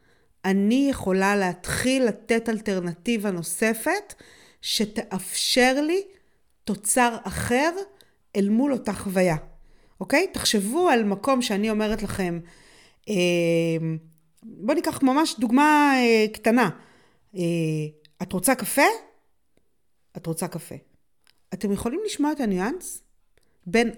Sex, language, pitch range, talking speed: female, Hebrew, 185-270 Hz, 100 wpm